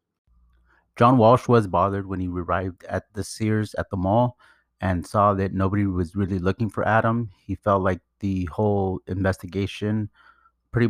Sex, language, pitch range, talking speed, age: male, English, 90-105 Hz, 160 wpm, 30-49